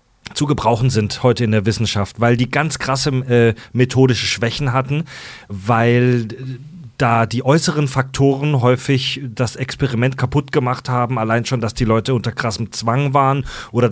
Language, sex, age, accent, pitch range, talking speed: German, male, 30-49, German, 115-140 Hz, 155 wpm